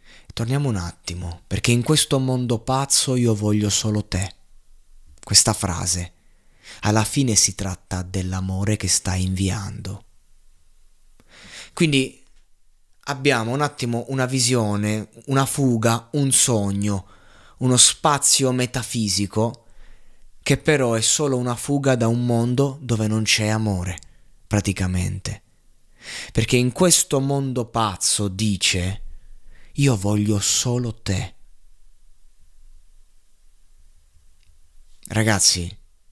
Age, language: 20-39, Italian